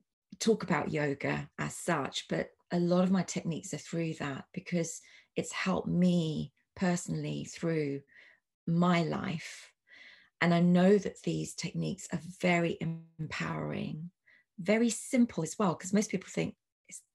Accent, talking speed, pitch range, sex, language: British, 140 wpm, 165-200 Hz, female, English